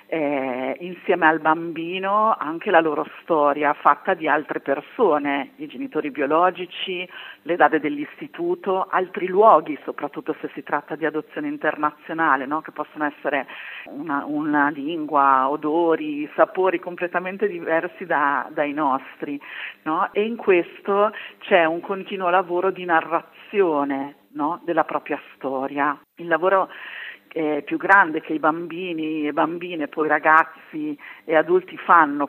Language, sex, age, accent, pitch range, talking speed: Italian, female, 50-69, native, 145-180 Hz, 130 wpm